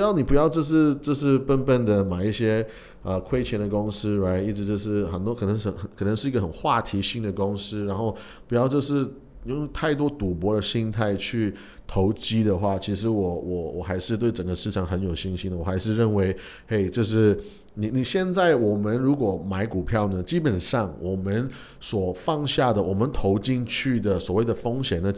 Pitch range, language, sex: 95-120 Hz, Chinese, male